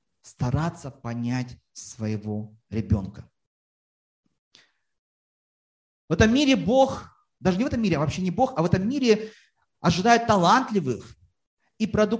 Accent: native